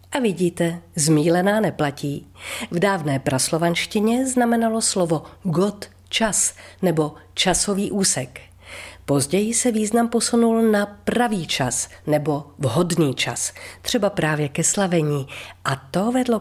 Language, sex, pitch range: Czech, female, 135-190 Hz